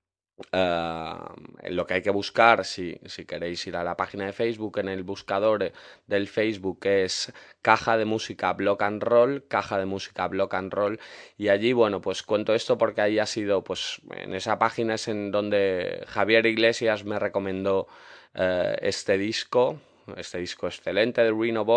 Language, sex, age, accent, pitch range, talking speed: Spanish, male, 20-39, Spanish, 95-110 Hz, 170 wpm